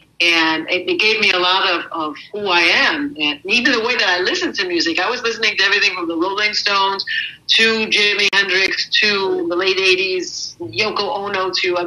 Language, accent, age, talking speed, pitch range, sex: English, American, 50-69, 200 wpm, 180-255 Hz, female